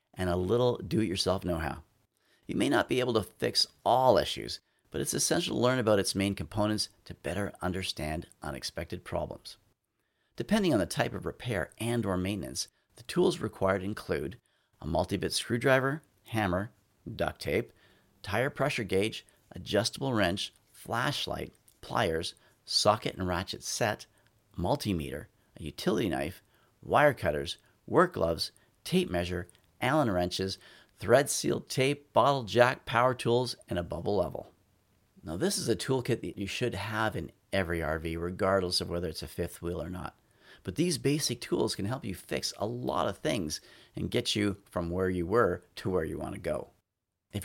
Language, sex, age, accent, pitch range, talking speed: English, male, 40-59, American, 90-120 Hz, 160 wpm